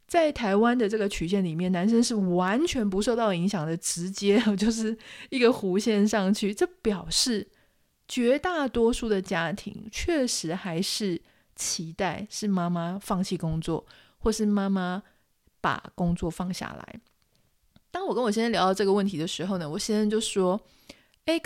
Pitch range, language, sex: 185-230 Hz, Chinese, female